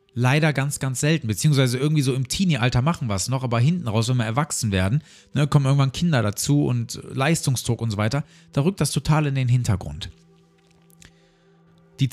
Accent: German